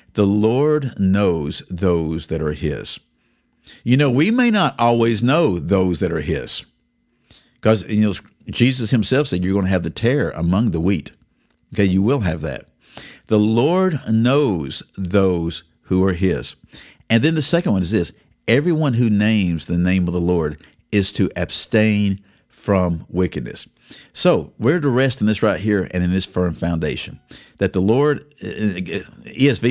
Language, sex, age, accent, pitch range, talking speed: English, male, 50-69, American, 90-115 Hz, 160 wpm